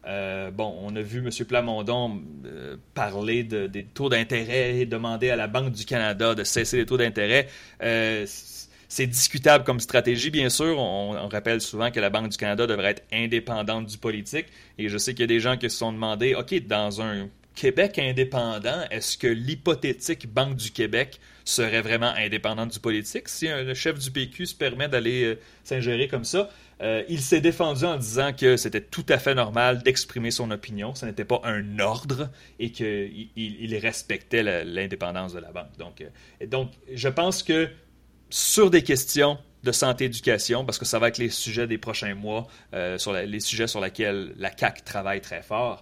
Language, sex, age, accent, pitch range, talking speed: French, male, 30-49, Canadian, 105-130 Hz, 195 wpm